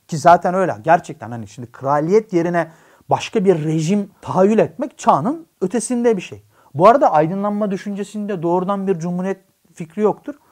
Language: Turkish